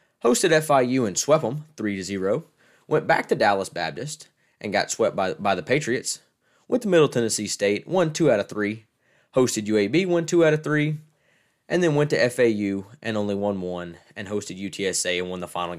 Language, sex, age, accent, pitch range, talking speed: English, male, 20-39, American, 100-150 Hz, 190 wpm